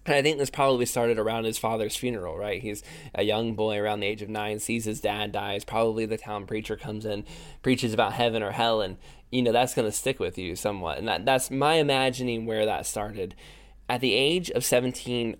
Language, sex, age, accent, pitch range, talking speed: English, male, 10-29, American, 110-130 Hz, 220 wpm